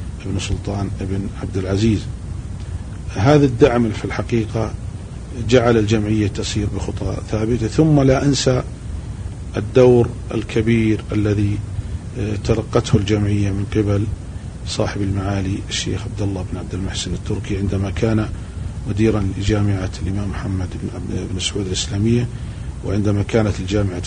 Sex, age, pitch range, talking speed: male, 40-59, 95-115 Hz, 110 wpm